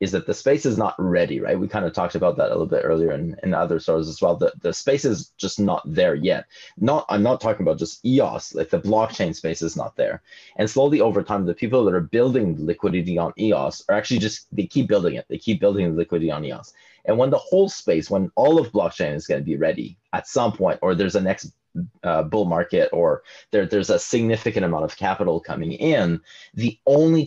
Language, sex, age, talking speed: English, male, 30-49, 240 wpm